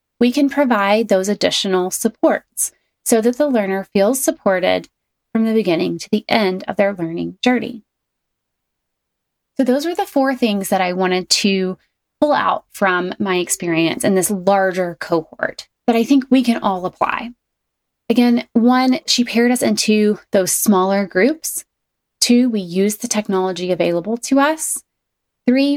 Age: 30-49